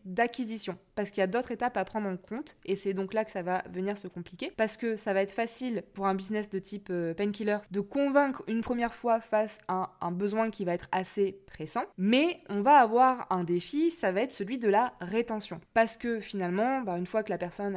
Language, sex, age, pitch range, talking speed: French, female, 20-39, 190-235 Hz, 235 wpm